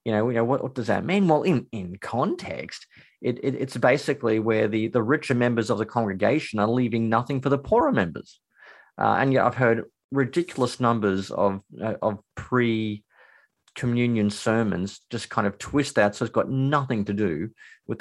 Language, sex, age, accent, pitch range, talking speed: English, male, 30-49, Australian, 105-130 Hz, 185 wpm